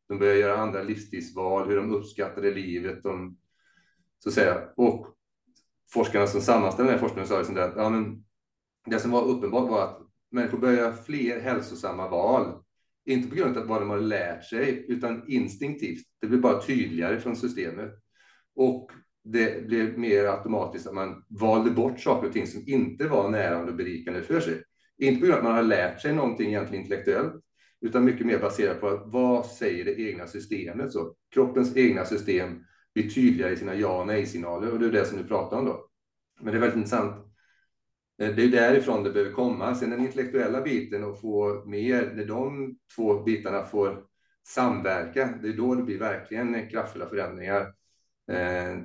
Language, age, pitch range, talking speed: Swedish, 30-49, 100-120 Hz, 185 wpm